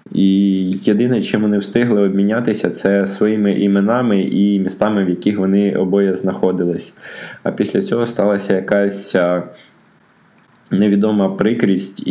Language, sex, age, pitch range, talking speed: Ukrainian, male, 20-39, 95-105 Hz, 115 wpm